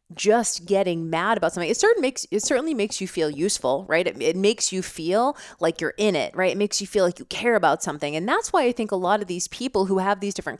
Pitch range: 170-215 Hz